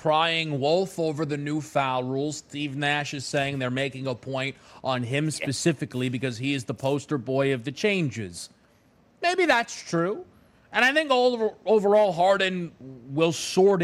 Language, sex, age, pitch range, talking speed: English, male, 30-49, 135-195 Hz, 165 wpm